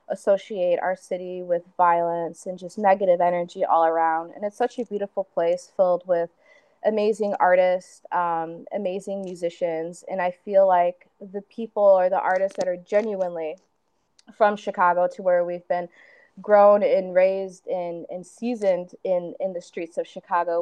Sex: female